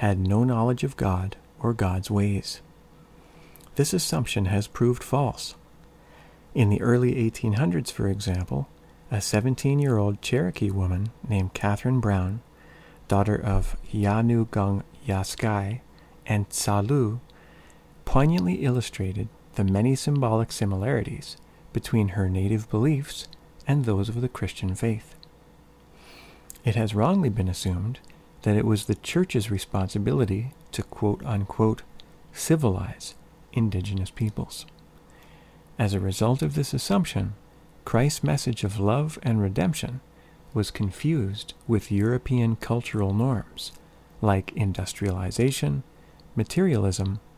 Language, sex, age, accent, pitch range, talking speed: English, male, 50-69, American, 100-140 Hz, 110 wpm